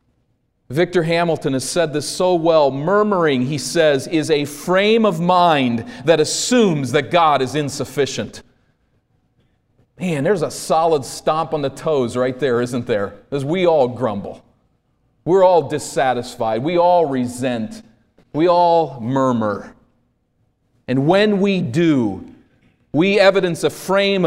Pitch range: 125-160 Hz